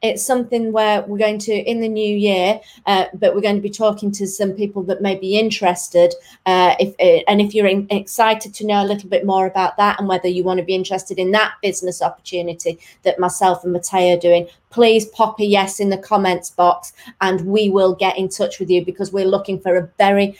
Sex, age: female, 30-49